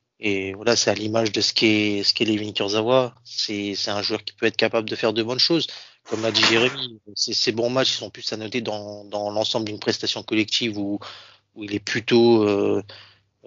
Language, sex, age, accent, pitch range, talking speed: French, male, 20-39, French, 105-115 Hz, 220 wpm